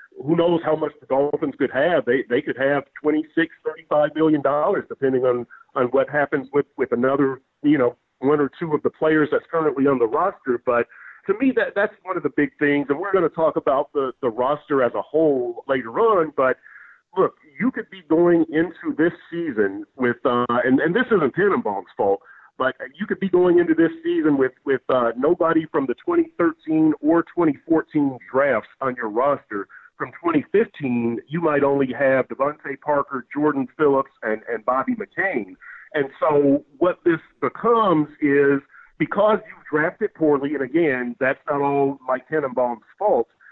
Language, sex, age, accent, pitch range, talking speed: English, male, 40-59, American, 135-175 Hz, 180 wpm